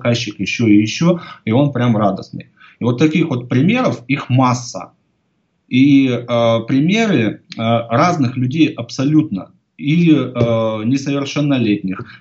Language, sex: Ukrainian, male